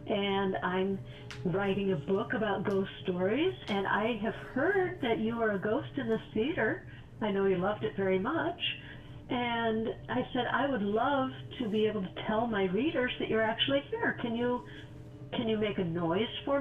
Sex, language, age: female, English, 50-69